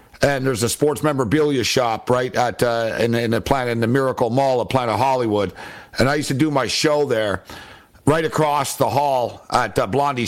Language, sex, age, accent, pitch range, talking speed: English, male, 60-79, American, 125-155 Hz, 205 wpm